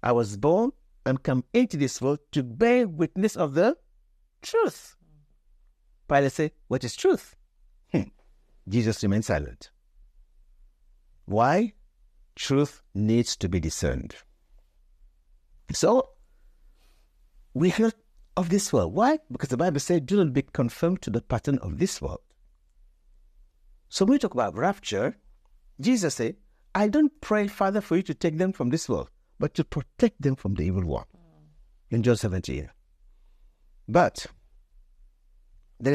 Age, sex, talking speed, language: 60-79, male, 140 wpm, English